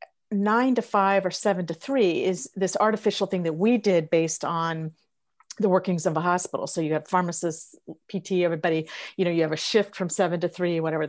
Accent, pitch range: American, 165-195 Hz